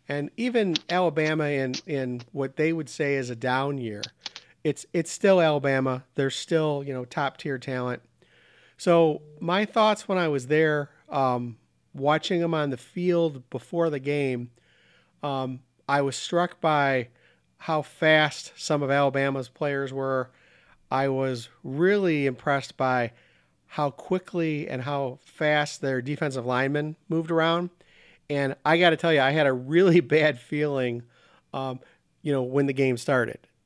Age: 40-59